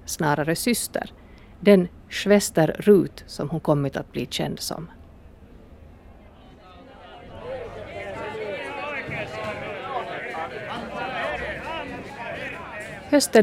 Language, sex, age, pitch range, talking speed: Swedish, female, 50-69, 150-190 Hz, 60 wpm